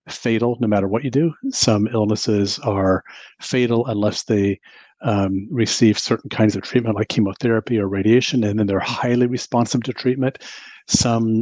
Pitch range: 105-125 Hz